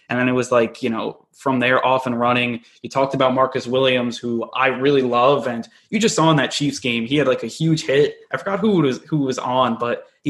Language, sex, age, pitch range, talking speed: English, male, 20-39, 120-145 Hz, 260 wpm